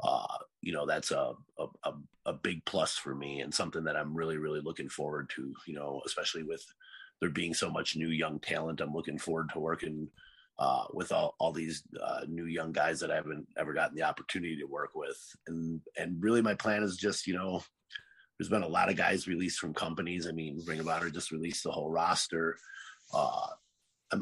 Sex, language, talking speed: male, English, 215 wpm